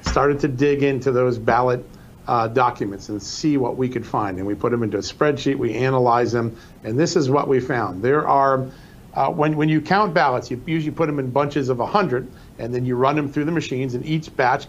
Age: 50-69